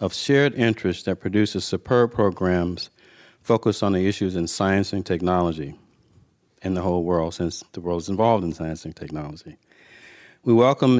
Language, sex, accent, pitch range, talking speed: English, male, American, 90-110 Hz, 165 wpm